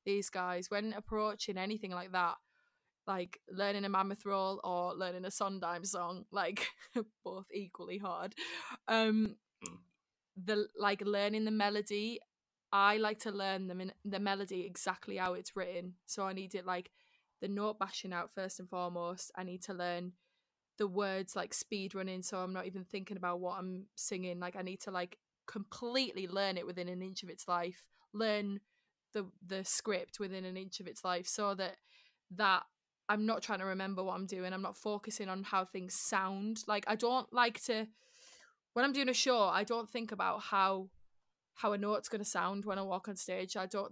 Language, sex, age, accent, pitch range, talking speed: English, female, 20-39, British, 185-210 Hz, 190 wpm